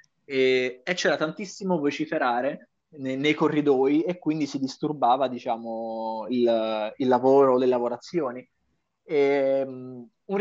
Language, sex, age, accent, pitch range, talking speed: Italian, male, 20-39, native, 135-175 Hz, 120 wpm